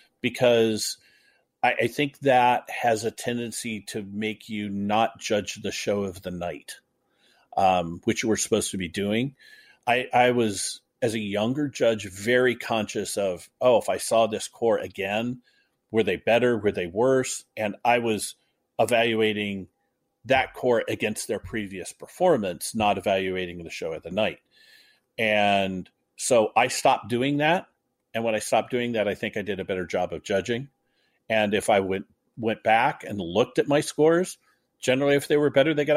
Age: 40-59